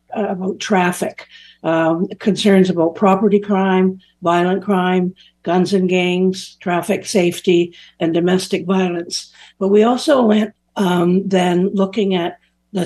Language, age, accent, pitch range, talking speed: English, 60-79, American, 175-200 Hz, 120 wpm